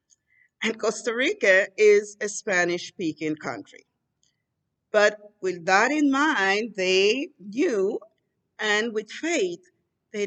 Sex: female